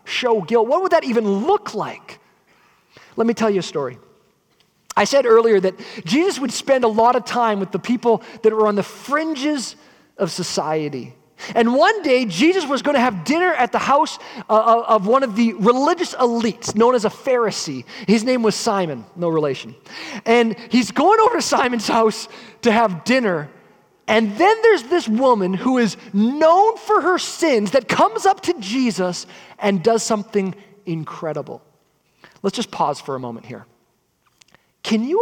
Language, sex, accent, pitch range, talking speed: English, male, American, 200-280 Hz, 175 wpm